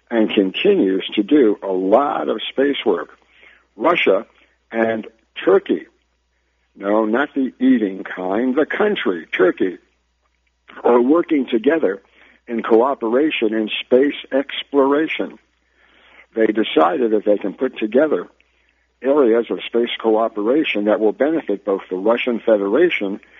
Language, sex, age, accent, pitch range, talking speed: English, male, 60-79, American, 105-130 Hz, 120 wpm